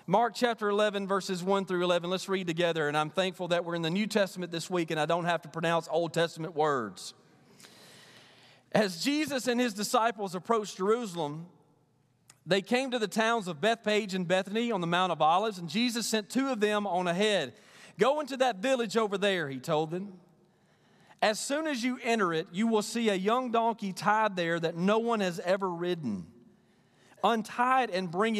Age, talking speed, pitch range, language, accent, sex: 40-59, 195 wpm, 175-225 Hz, English, American, male